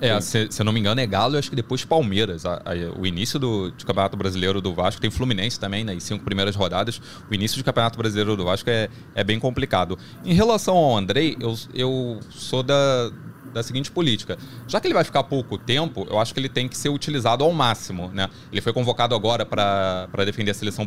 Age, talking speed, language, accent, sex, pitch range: 20-39, 225 wpm, Portuguese, Brazilian, male, 105-130 Hz